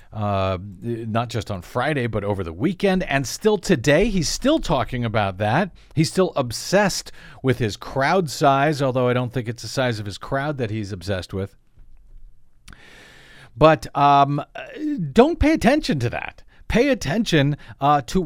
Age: 50-69